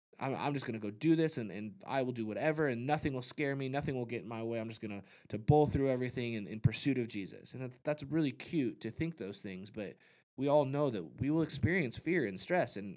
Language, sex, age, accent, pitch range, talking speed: English, male, 20-39, American, 110-150 Hz, 265 wpm